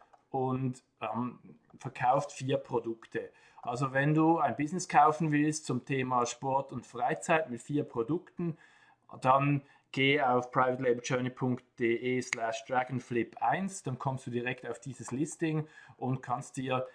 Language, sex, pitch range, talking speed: German, male, 125-145 Hz, 130 wpm